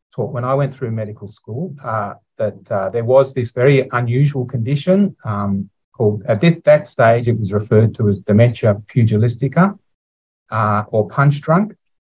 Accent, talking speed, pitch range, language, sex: Australian, 155 wpm, 110-145 Hz, English, male